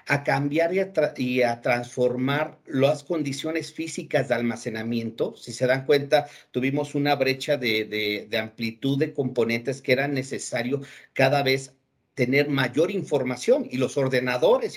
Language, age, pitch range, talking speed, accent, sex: Spanish, 50-69, 125-150 Hz, 150 wpm, Mexican, male